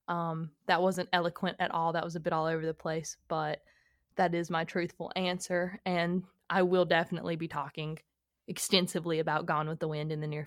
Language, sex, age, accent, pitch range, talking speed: English, female, 20-39, American, 165-195 Hz, 200 wpm